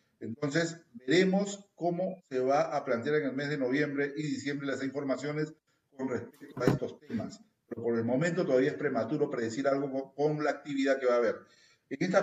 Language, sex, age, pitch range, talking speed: Spanish, male, 50-69, 125-170 Hz, 195 wpm